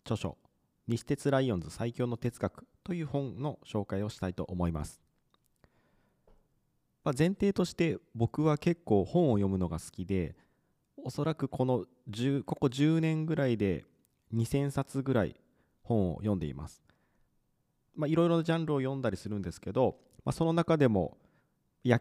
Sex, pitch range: male, 95-145 Hz